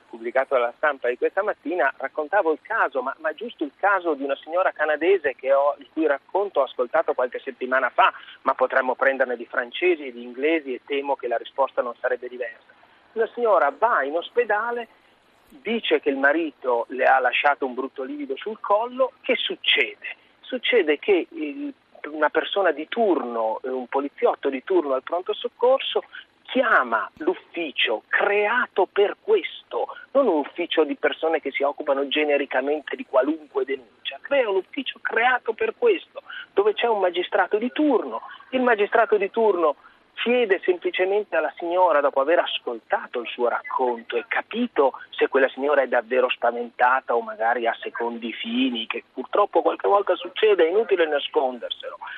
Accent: native